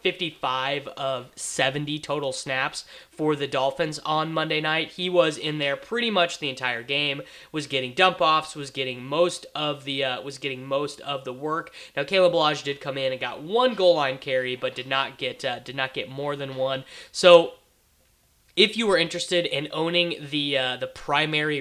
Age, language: 20-39, English